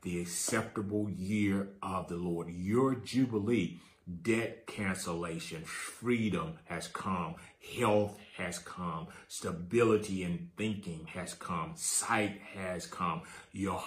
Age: 40-59